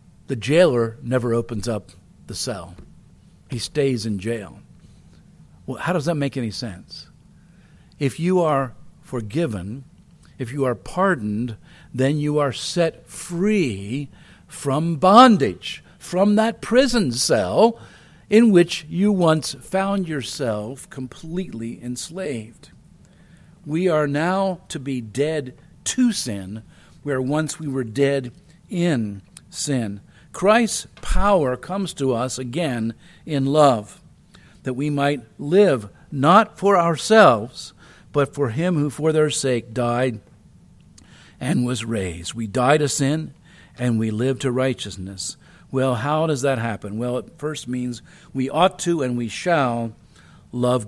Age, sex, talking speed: 50-69, male, 130 wpm